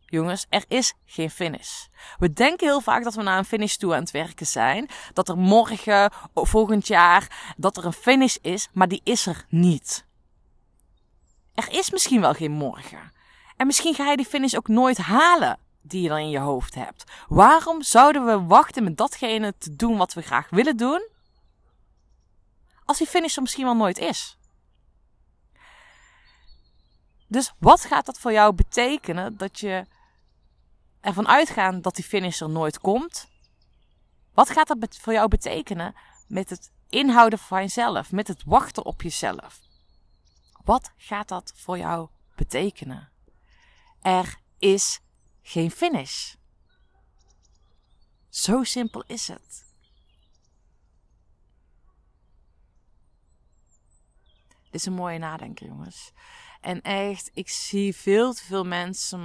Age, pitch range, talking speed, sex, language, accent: 20-39, 160-245 Hz, 140 wpm, female, Dutch, Dutch